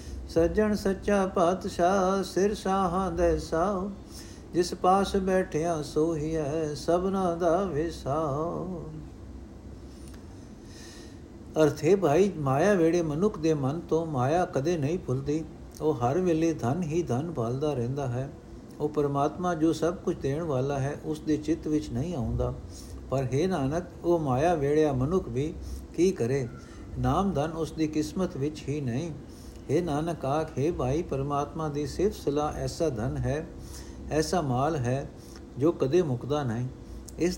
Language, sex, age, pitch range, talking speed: Punjabi, male, 60-79, 130-170 Hz, 130 wpm